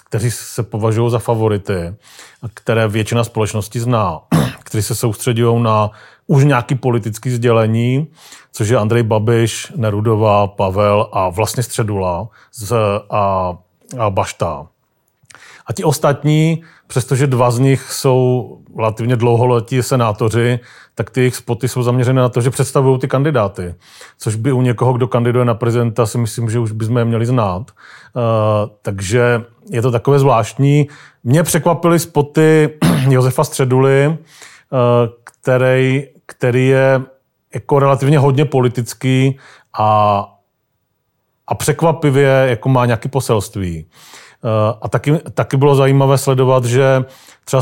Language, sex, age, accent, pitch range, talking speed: Czech, male, 40-59, native, 115-135 Hz, 125 wpm